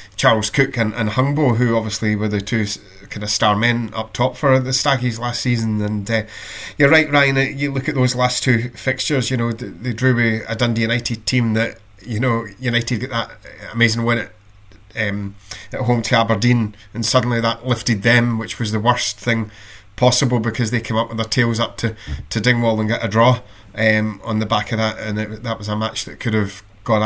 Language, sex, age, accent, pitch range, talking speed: English, male, 20-39, British, 105-120 Hz, 215 wpm